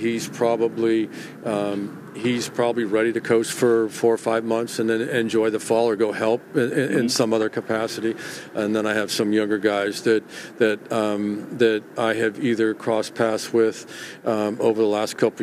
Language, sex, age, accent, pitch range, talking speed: English, male, 50-69, American, 110-115 Hz, 185 wpm